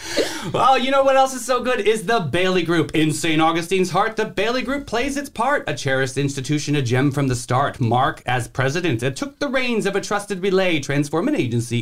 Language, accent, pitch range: English, American, 135-205 Hz